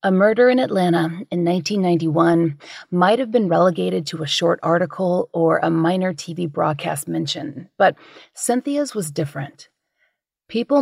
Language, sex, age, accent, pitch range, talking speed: English, female, 30-49, American, 155-195 Hz, 140 wpm